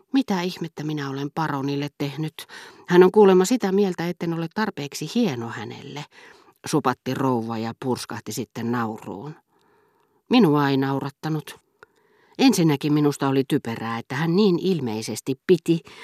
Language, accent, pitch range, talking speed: Finnish, native, 125-170 Hz, 125 wpm